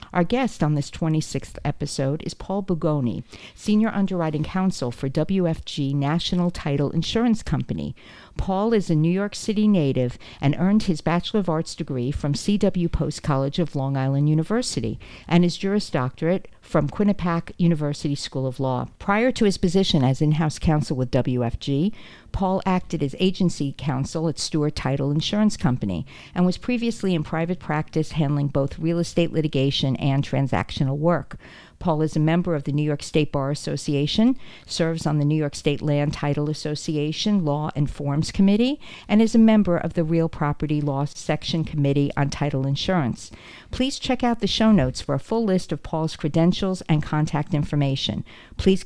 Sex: female